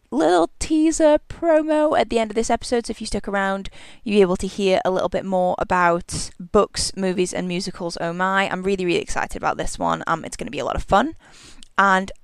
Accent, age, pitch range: British, 10-29, 175-220 Hz